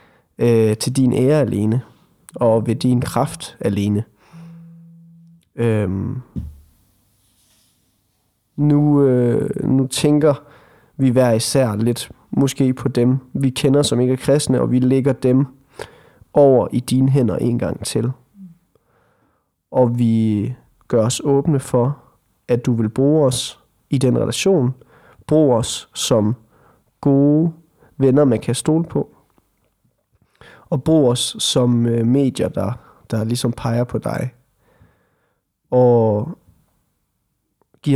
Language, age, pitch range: Danish, 30-49, 115-140 Hz